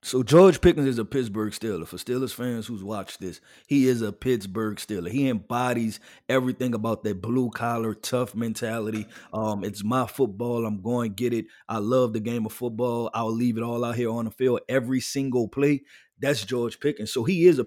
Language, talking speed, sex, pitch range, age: English, 205 wpm, male, 110-135 Hz, 20-39